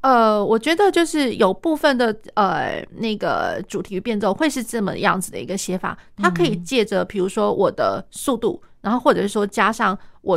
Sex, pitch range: female, 195-250 Hz